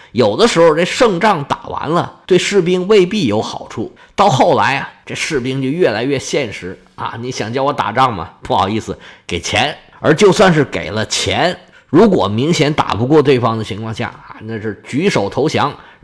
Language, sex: Chinese, male